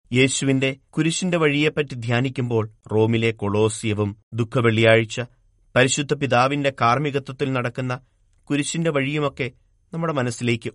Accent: native